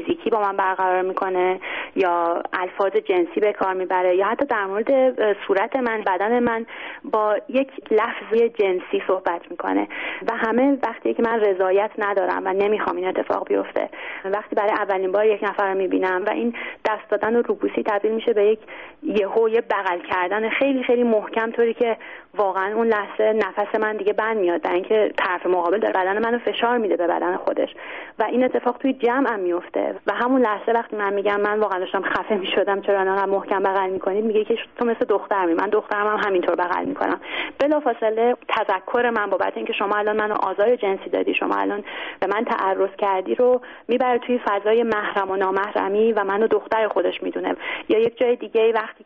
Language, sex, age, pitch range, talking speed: Persian, female, 30-49, 200-235 Hz, 185 wpm